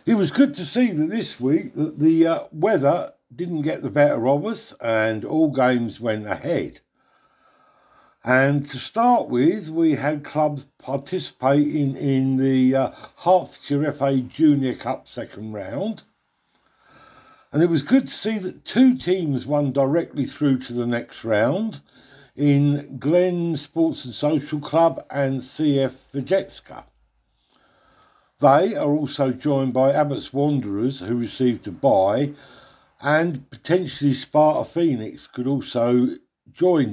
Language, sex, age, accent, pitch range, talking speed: English, male, 60-79, British, 125-160 Hz, 135 wpm